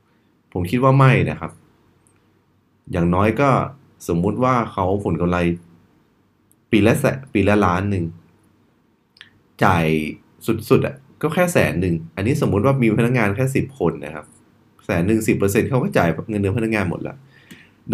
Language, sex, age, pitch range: Thai, male, 20-39, 85-115 Hz